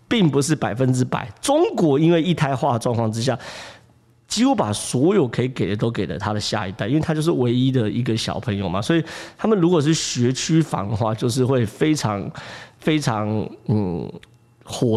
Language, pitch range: Chinese, 115-165 Hz